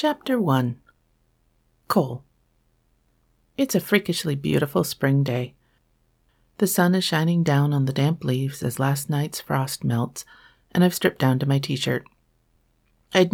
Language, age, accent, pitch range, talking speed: English, 40-59, American, 125-160 Hz, 140 wpm